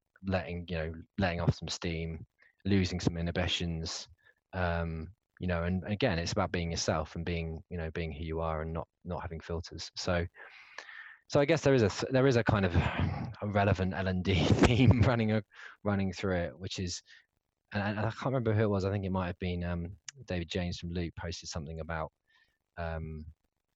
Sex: male